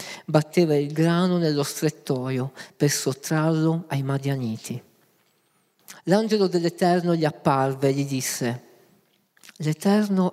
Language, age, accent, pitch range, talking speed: Italian, 40-59, native, 135-175 Hz, 100 wpm